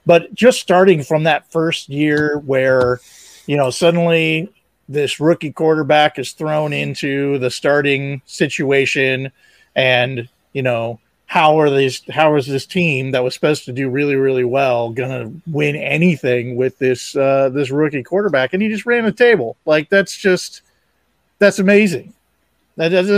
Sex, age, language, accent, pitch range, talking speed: male, 40-59, English, American, 130-160 Hz, 155 wpm